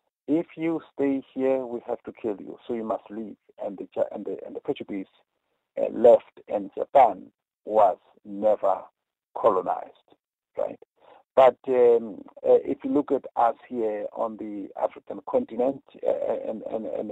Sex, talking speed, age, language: male, 150 wpm, 50-69, English